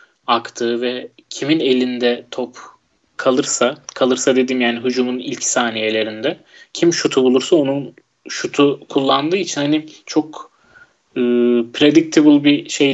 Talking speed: 115 wpm